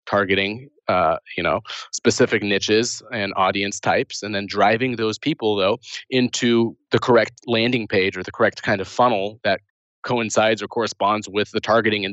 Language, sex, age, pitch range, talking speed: English, male, 20-39, 100-115 Hz, 170 wpm